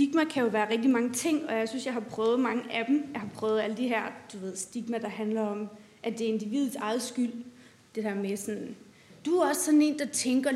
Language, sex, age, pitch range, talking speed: Danish, female, 30-49, 210-265 Hz, 255 wpm